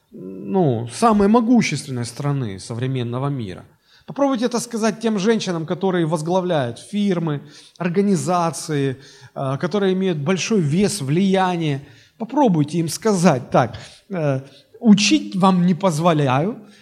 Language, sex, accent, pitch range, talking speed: Russian, male, native, 140-180 Hz, 100 wpm